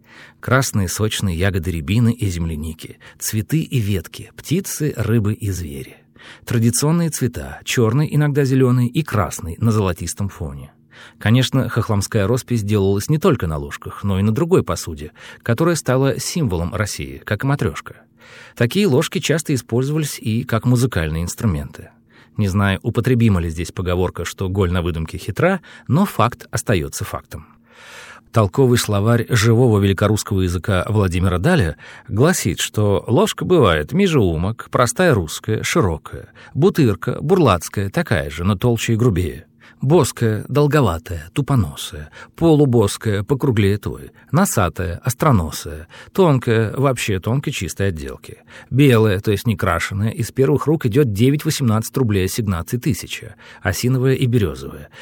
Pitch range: 95-135 Hz